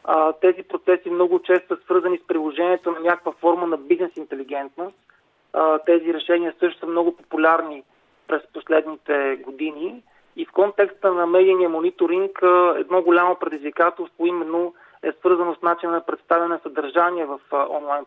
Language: Bulgarian